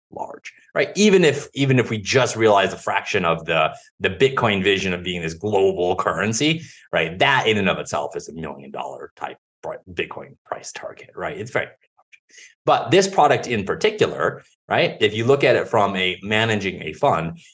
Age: 30-49